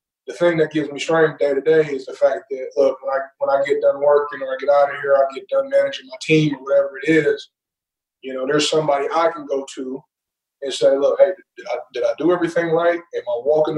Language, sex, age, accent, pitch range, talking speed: English, male, 20-39, American, 140-175 Hz, 255 wpm